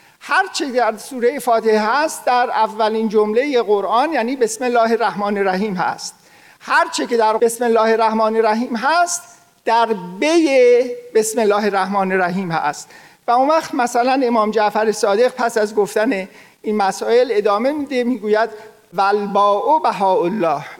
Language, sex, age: Persian, male, 50-69